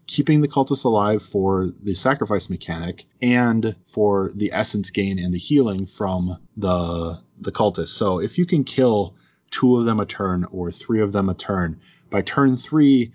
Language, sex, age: English, male, 20-39